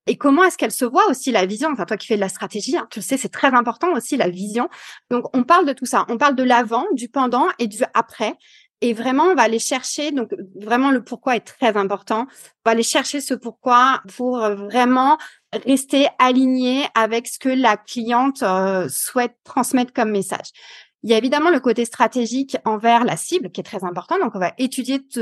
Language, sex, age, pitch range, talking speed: French, female, 30-49, 210-275 Hz, 220 wpm